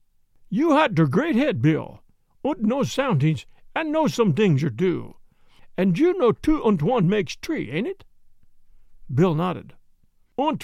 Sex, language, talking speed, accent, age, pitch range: male, English, 160 wpm, American, 60-79, 170-265 Hz